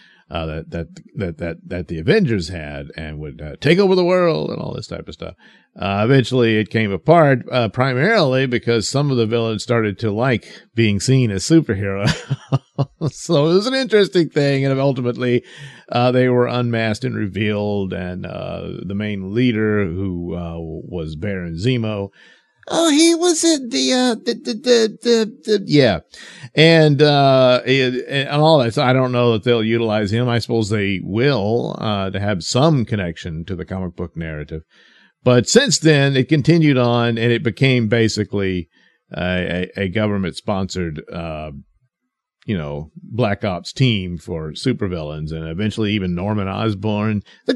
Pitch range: 95-140 Hz